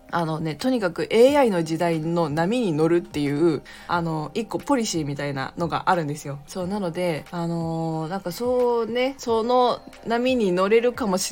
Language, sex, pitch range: Japanese, female, 160-210 Hz